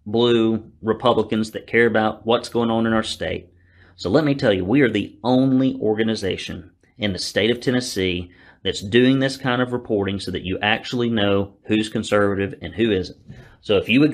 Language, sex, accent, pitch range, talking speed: English, male, American, 105-130 Hz, 195 wpm